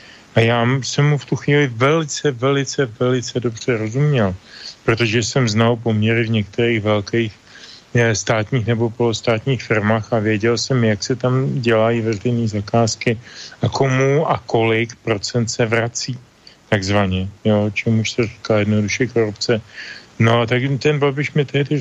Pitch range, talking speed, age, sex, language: 110-130 Hz, 145 wpm, 40-59, male, Slovak